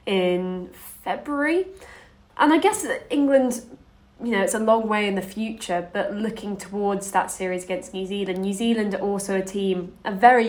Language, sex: English, female